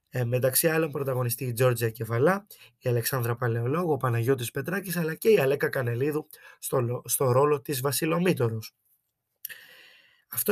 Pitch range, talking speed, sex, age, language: 125-155 Hz, 135 wpm, male, 20-39, Greek